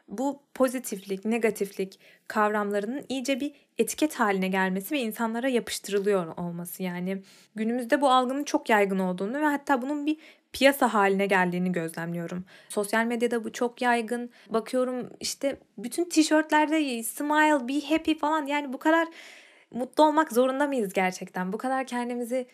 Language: Turkish